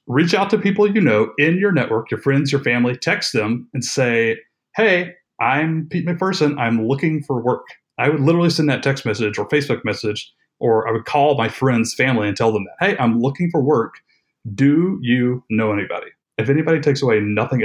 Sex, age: male, 30-49